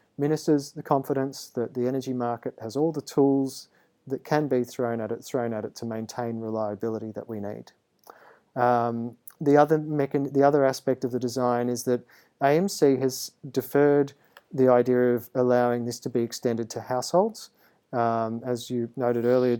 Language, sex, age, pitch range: English, male, 40-59, 115-140 Hz